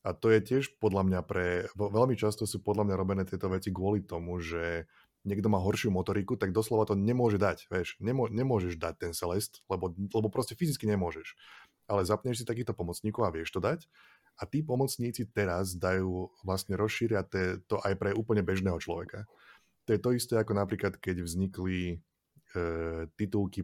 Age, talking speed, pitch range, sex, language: 20-39, 180 wpm, 90-110 Hz, male, Slovak